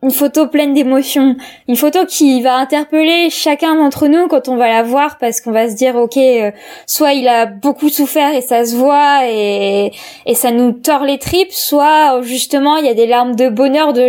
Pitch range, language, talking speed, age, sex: 240-295 Hz, French, 215 wpm, 20-39, female